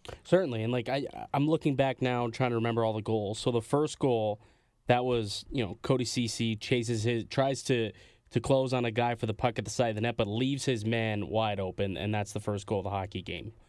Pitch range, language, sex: 110-130 Hz, English, male